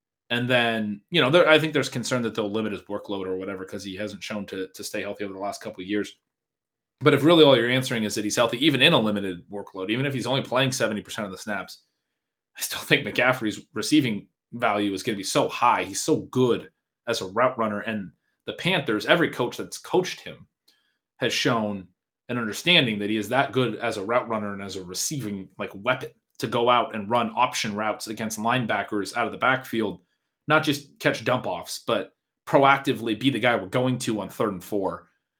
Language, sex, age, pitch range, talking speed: English, male, 30-49, 105-130 Hz, 215 wpm